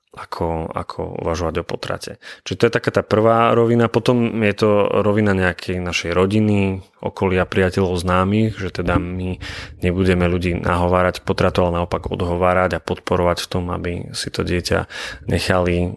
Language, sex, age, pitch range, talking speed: Slovak, male, 20-39, 85-105 Hz, 155 wpm